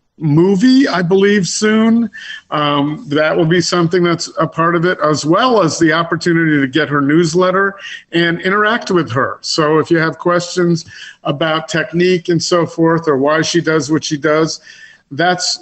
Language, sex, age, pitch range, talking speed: English, male, 50-69, 145-180 Hz, 175 wpm